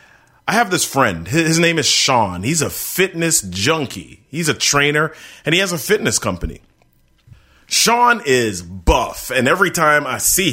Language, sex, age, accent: English, male, 30-49, American